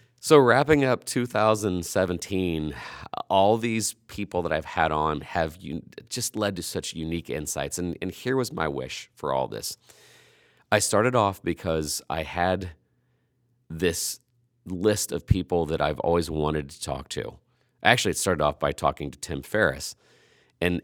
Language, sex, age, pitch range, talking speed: English, male, 40-59, 80-105 Hz, 155 wpm